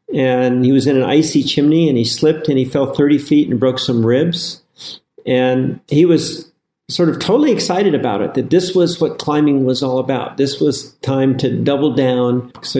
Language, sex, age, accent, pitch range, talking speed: English, male, 50-69, American, 125-150 Hz, 200 wpm